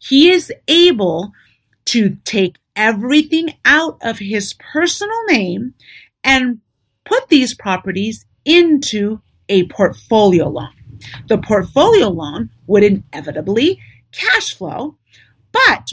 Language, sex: English, female